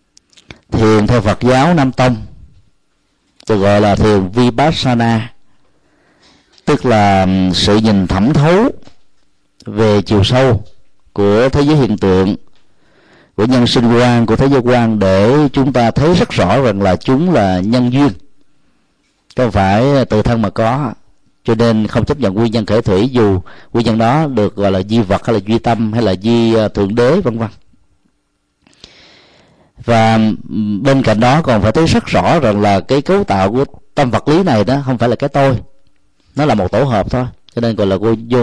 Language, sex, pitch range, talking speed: Vietnamese, male, 105-130 Hz, 180 wpm